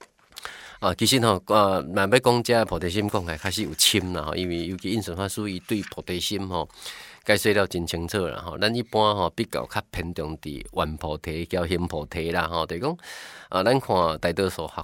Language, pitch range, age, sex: Chinese, 80-100 Hz, 30-49, male